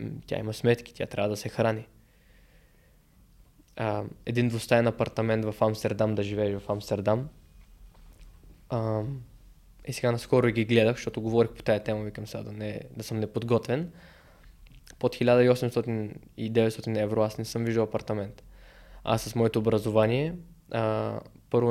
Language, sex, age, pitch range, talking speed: Bulgarian, male, 20-39, 105-120 Hz, 145 wpm